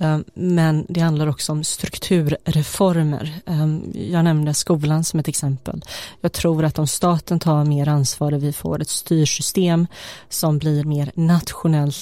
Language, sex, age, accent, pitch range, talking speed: Swedish, female, 30-49, native, 150-165 Hz, 145 wpm